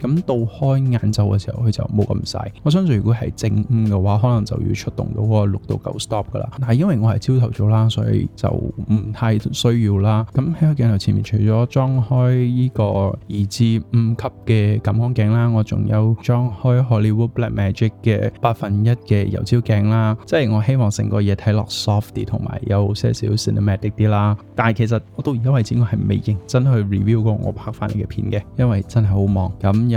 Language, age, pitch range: Chinese, 20-39, 105-120 Hz